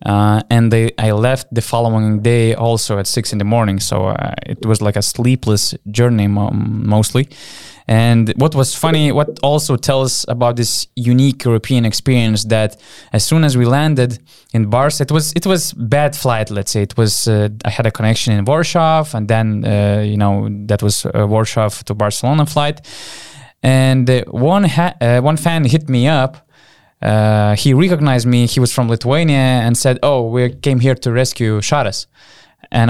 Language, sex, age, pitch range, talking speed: English, male, 20-39, 110-140 Hz, 185 wpm